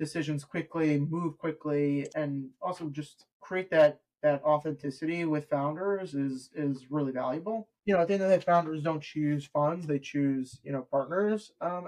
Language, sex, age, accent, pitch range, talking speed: English, male, 20-39, American, 140-160 Hz, 175 wpm